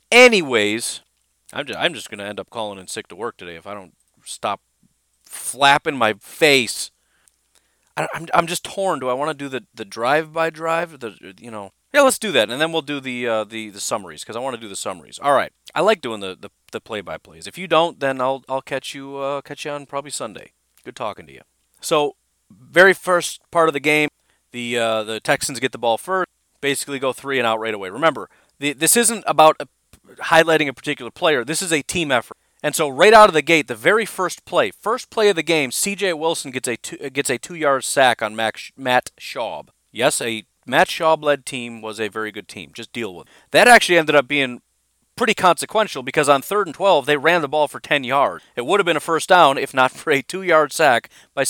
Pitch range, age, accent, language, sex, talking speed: 120-165 Hz, 30-49, American, English, male, 230 wpm